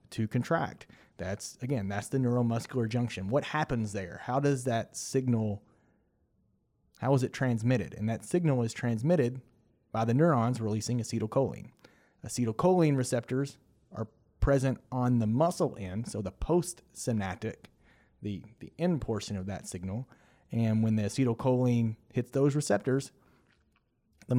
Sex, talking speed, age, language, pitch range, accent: male, 135 wpm, 30-49, English, 110-135 Hz, American